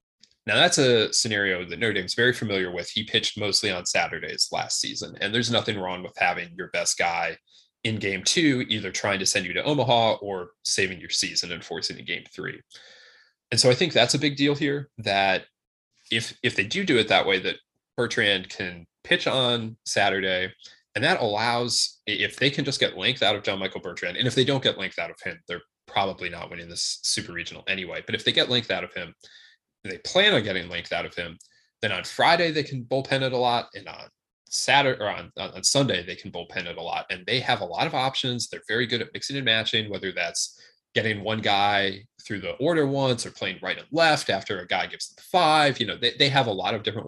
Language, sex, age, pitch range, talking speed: English, male, 20-39, 100-135 Hz, 230 wpm